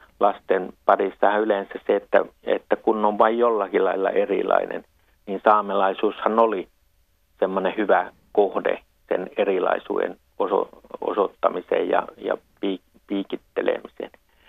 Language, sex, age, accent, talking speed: Finnish, male, 60-79, native, 100 wpm